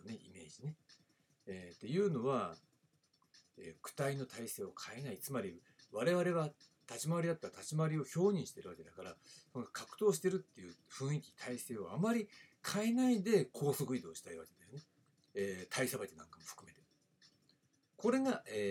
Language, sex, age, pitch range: Japanese, male, 60-79, 125-205 Hz